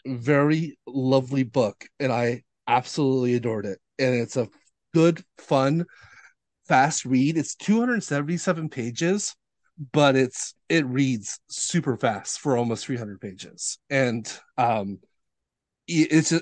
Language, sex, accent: English, male, American